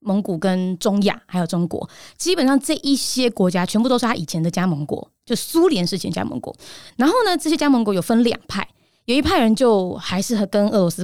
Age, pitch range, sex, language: 20-39, 185-255 Hz, female, Chinese